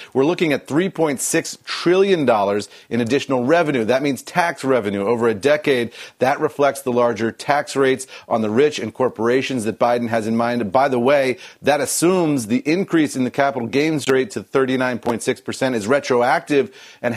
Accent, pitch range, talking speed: American, 115-145 Hz, 170 wpm